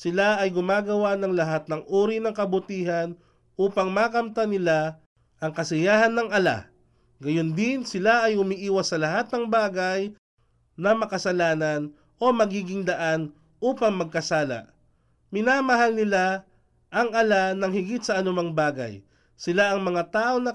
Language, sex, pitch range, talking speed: Filipino, male, 155-205 Hz, 135 wpm